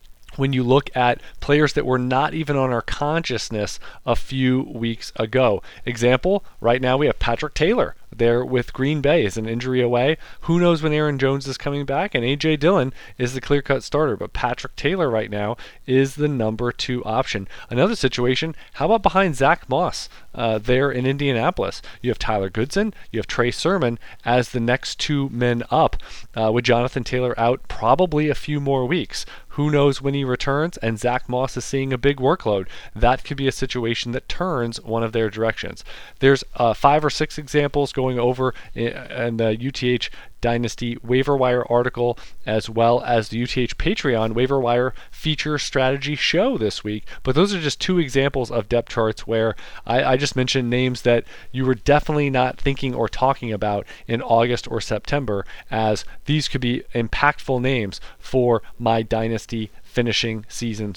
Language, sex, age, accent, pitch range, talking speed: English, male, 40-59, American, 115-140 Hz, 175 wpm